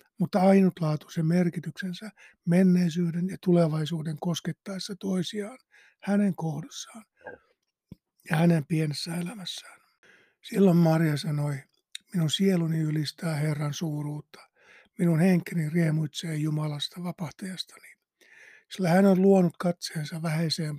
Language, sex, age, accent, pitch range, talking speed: Finnish, male, 60-79, native, 160-185 Hz, 95 wpm